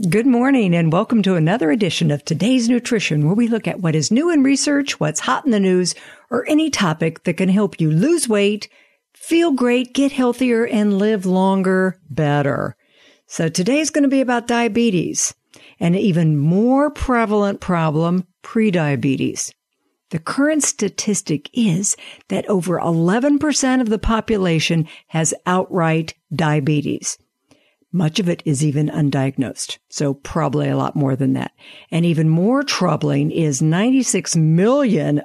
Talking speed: 150 wpm